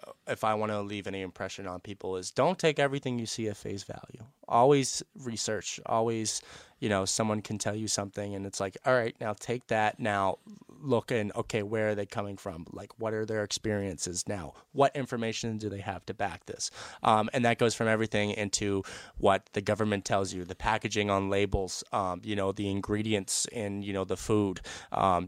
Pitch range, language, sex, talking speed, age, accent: 100-115 Hz, English, male, 205 wpm, 20-39, American